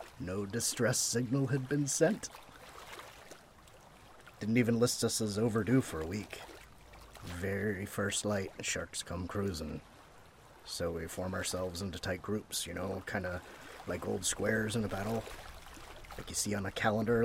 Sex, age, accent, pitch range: male, 30-49, American, 90-110 Hz